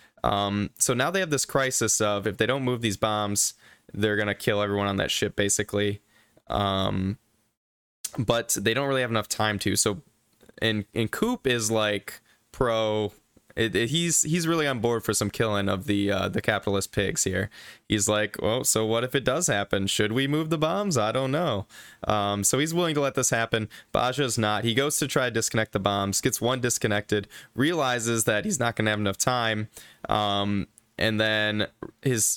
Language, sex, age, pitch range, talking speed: English, male, 10-29, 100-125 Hz, 195 wpm